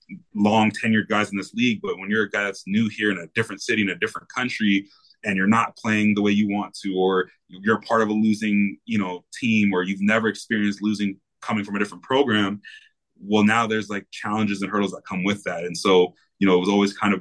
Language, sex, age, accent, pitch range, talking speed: English, male, 20-39, American, 95-105 Hz, 245 wpm